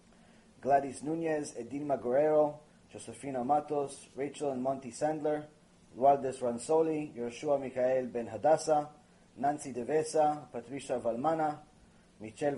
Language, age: English, 30-49